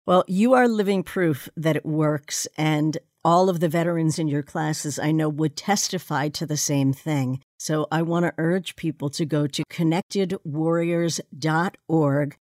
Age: 60-79